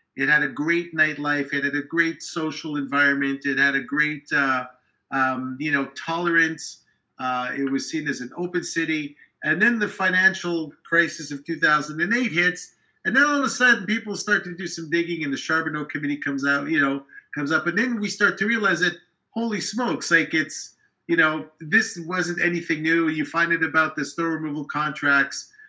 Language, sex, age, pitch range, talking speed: English, male, 50-69, 140-175 Hz, 195 wpm